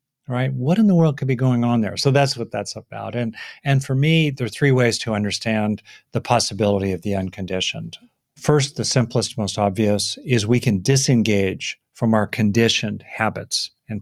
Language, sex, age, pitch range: English, male, 50-69, 105-135 Hz